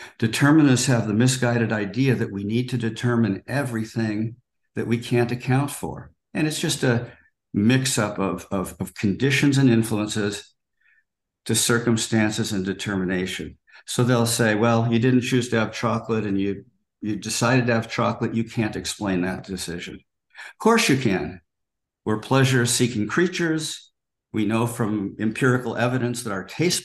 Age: 50-69